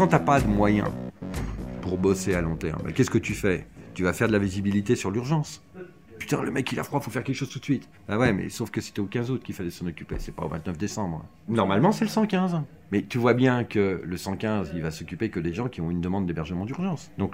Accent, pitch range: French, 85-135 Hz